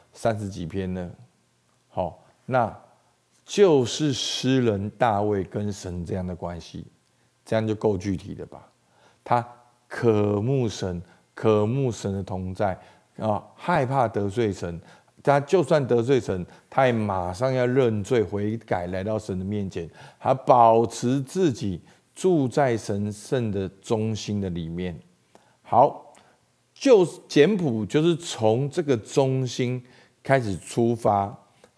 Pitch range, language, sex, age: 100-130 Hz, Chinese, male, 50-69